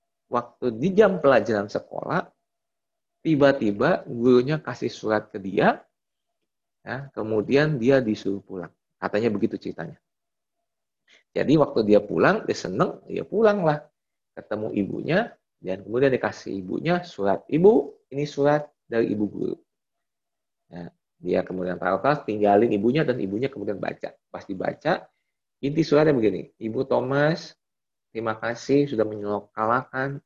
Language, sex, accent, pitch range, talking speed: Indonesian, male, native, 105-140 Hz, 125 wpm